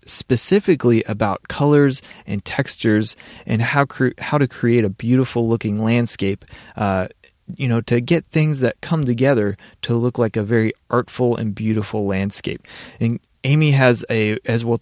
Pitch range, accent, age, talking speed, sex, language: 105-135 Hz, American, 30-49, 155 wpm, male, English